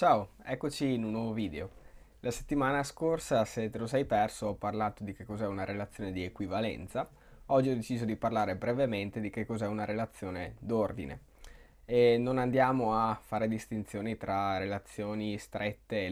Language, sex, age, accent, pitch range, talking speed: Italian, male, 20-39, native, 105-125 Hz, 170 wpm